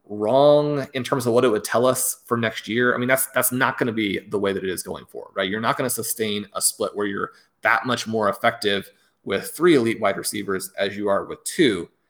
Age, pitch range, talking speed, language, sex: 30-49, 110-130 Hz, 255 wpm, English, male